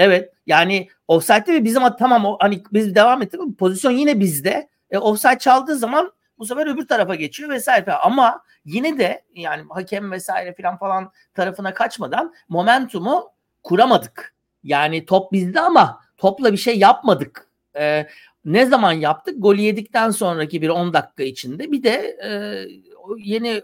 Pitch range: 165-230 Hz